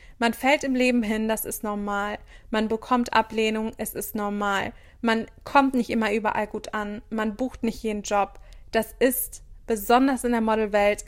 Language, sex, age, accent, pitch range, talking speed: German, female, 20-39, German, 215-245 Hz, 175 wpm